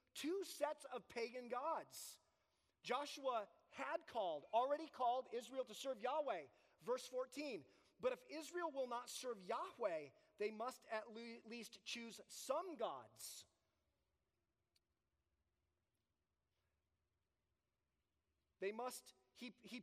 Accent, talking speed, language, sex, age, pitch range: American, 105 wpm, English, male, 30-49, 190-265 Hz